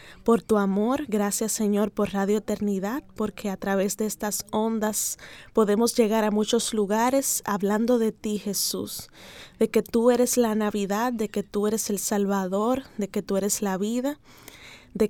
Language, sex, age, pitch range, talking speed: Spanish, female, 20-39, 200-230 Hz, 165 wpm